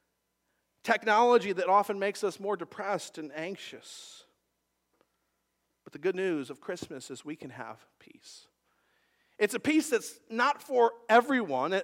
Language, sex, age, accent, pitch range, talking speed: English, male, 40-59, American, 165-230 Hz, 135 wpm